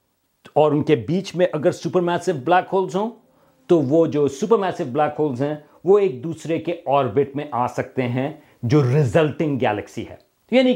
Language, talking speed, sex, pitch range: Urdu, 165 wpm, male, 130-175 Hz